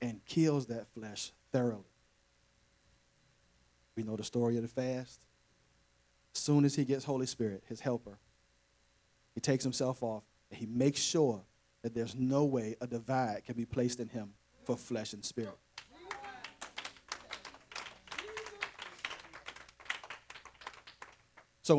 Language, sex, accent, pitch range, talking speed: English, male, American, 110-140 Hz, 125 wpm